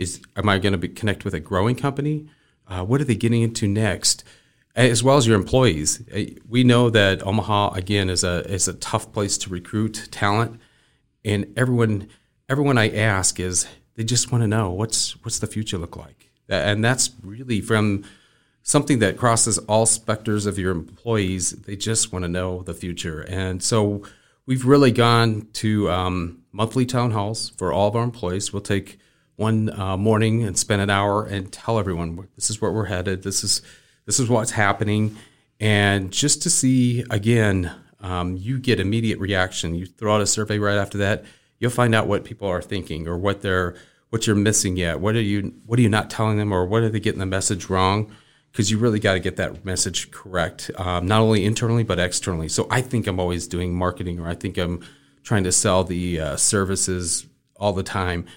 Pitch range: 95-115 Hz